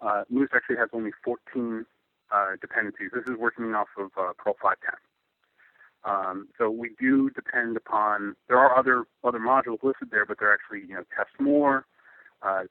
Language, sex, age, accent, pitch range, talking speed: English, male, 30-49, American, 105-125 Hz, 175 wpm